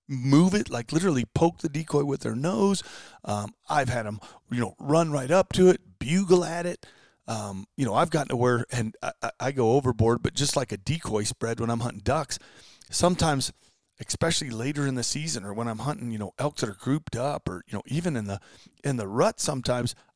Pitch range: 120-160 Hz